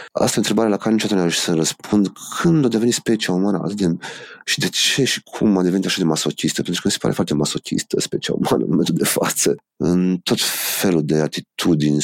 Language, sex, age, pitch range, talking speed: Romanian, male, 30-49, 80-105 Hz, 215 wpm